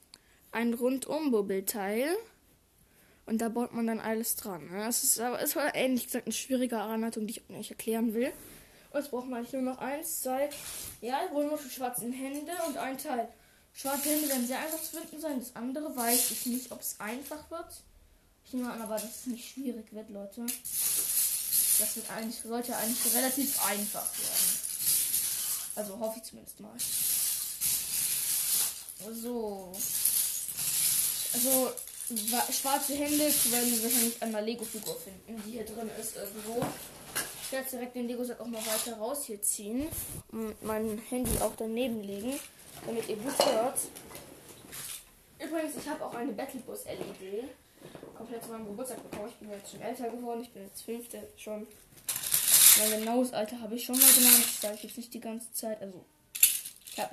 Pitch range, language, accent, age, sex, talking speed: 215-255 Hz, German, German, 10-29, female, 170 wpm